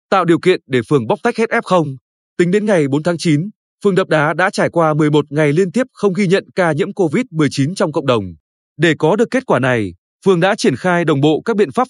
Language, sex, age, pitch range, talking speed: Vietnamese, male, 20-39, 150-205 Hz, 245 wpm